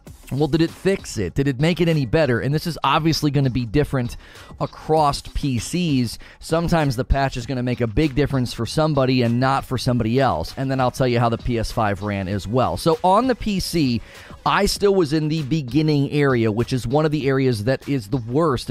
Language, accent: English, American